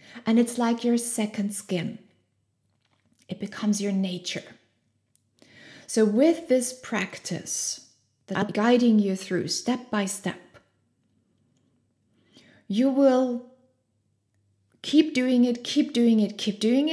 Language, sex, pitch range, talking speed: English, female, 195-260 Hz, 115 wpm